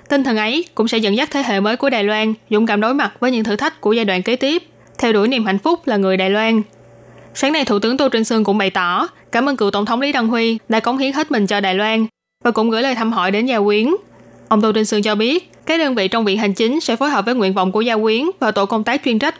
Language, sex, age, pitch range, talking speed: Vietnamese, female, 20-39, 205-255 Hz, 305 wpm